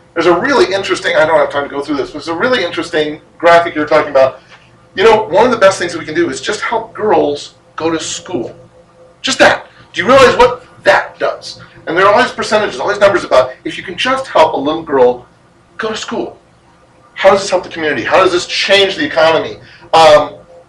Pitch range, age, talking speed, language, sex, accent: 160-195 Hz, 40-59, 230 wpm, English, male, American